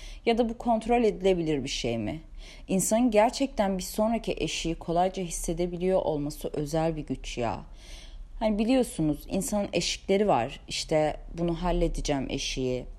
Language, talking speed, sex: Turkish, 135 wpm, female